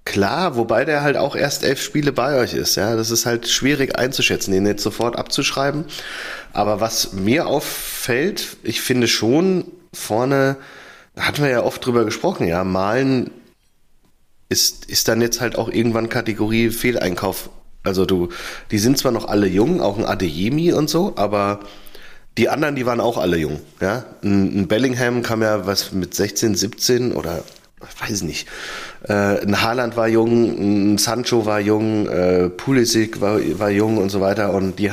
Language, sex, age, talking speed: German, male, 30-49, 170 wpm